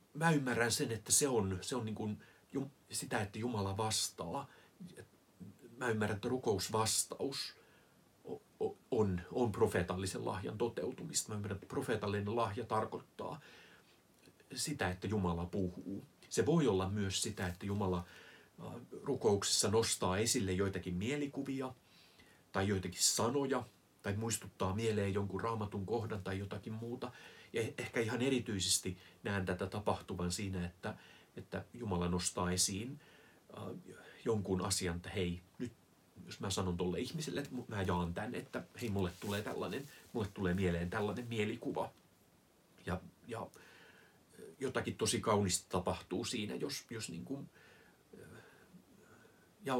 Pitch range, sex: 95-115 Hz, male